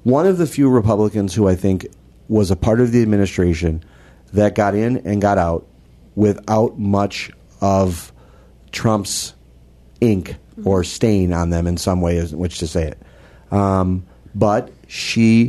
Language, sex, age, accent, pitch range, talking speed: English, male, 40-59, American, 90-105 Hz, 160 wpm